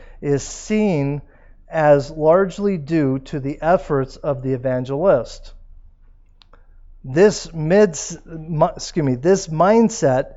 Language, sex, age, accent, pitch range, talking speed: English, male, 50-69, American, 130-180 Hz, 100 wpm